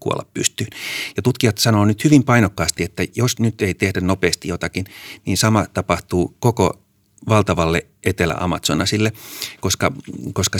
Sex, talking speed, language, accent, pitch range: male, 125 wpm, Finnish, native, 85-110 Hz